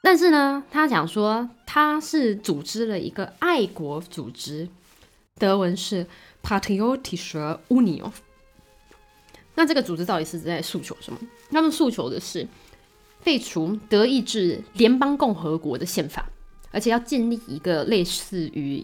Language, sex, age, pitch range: Chinese, female, 20-39, 170-260 Hz